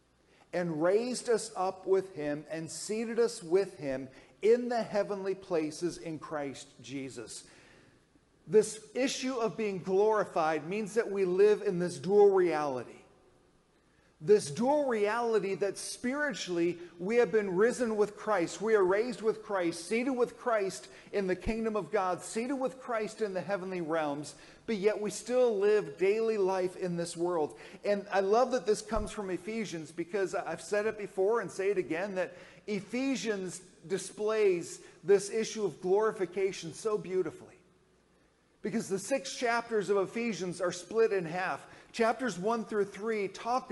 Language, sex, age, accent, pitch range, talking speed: English, male, 40-59, American, 180-225 Hz, 155 wpm